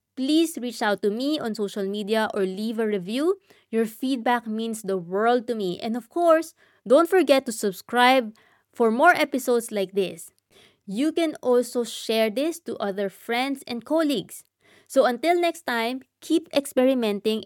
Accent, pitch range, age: Filipino, 200-265 Hz, 20-39